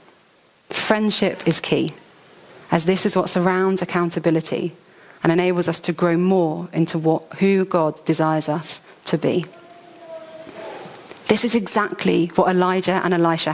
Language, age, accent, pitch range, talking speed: English, 30-49, British, 170-195 Hz, 130 wpm